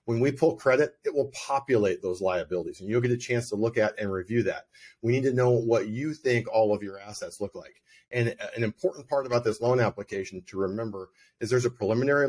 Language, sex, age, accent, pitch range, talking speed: English, male, 40-59, American, 105-125 Hz, 230 wpm